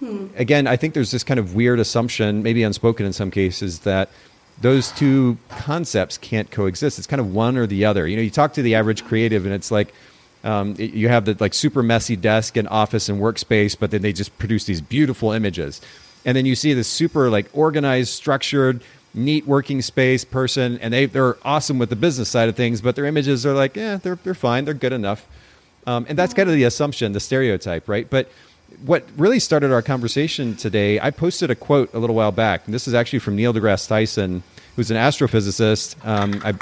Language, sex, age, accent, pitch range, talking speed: English, male, 40-59, American, 105-135 Hz, 215 wpm